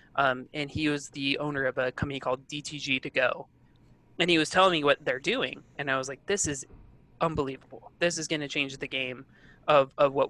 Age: 20-39